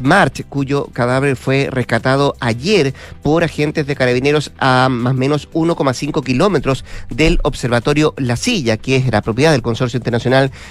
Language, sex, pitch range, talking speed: Spanish, male, 125-145 Hz, 150 wpm